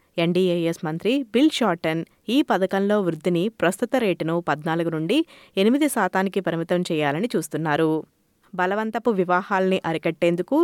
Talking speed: 105 wpm